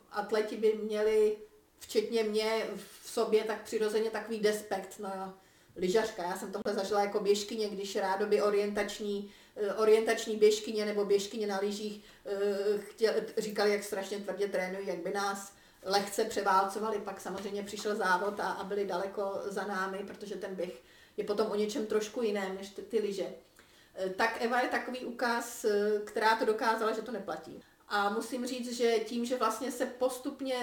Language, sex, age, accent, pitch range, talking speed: Czech, female, 40-59, native, 205-225 Hz, 165 wpm